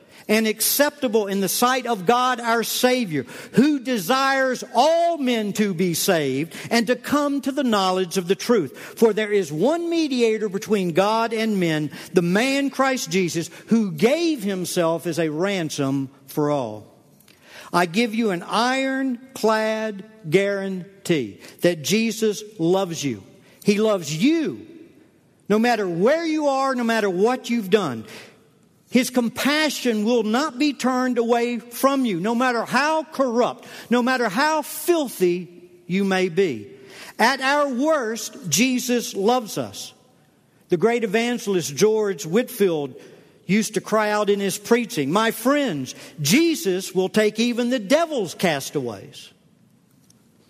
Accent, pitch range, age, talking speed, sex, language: American, 180-250 Hz, 50-69, 140 wpm, male, English